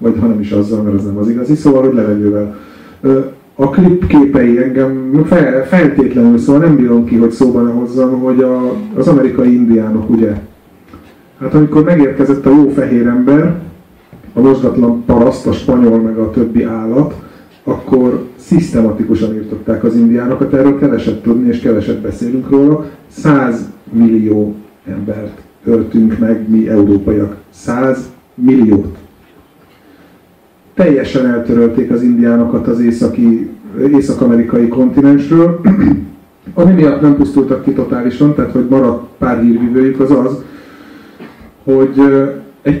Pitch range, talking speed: 115-140 Hz, 125 wpm